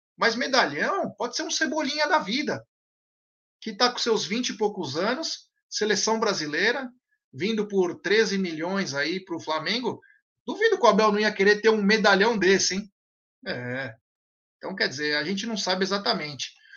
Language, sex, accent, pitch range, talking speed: Portuguese, male, Brazilian, 180-255 Hz, 170 wpm